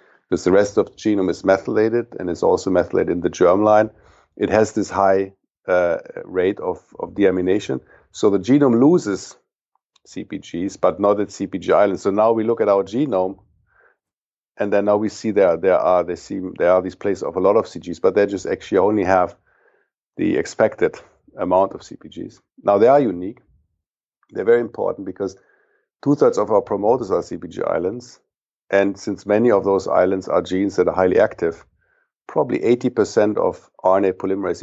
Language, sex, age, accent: English, male, 50-69, German